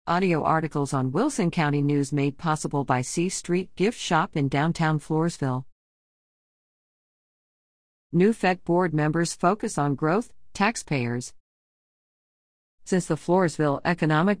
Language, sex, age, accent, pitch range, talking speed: English, female, 50-69, American, 145-180 Hz, 115 wpm